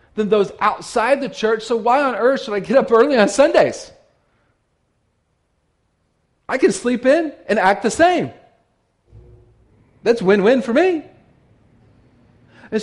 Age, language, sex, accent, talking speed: 40-59, English, male, American, 130 wpm